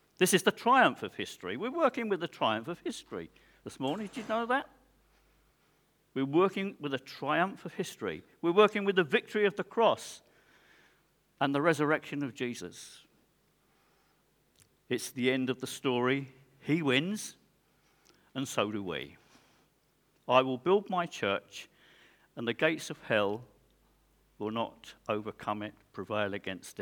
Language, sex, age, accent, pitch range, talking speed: English, male, 50-69, British, 105-165 Hz, 150 wpm